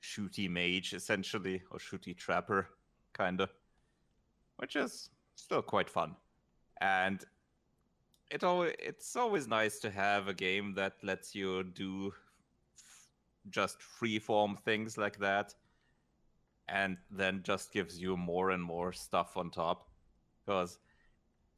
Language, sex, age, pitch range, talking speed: English, male, 30-49, 90-105 Hz, 115 wpm